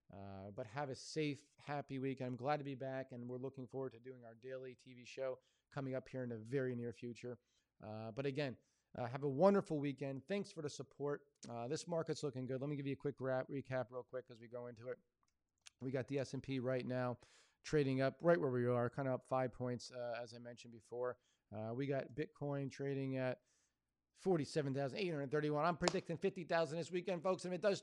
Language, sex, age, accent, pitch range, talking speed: English, male, 40-59, American, 125-155 Hz, 220 wpm